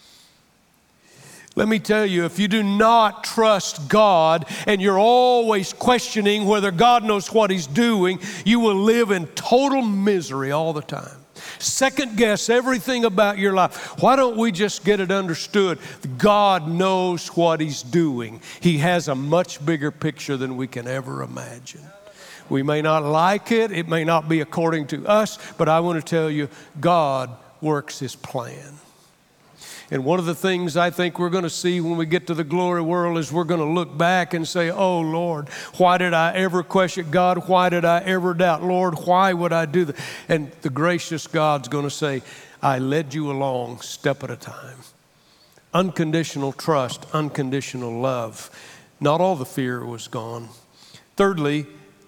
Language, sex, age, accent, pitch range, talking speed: English, male, 60-79, American, 145-190 Hz, 175 wpm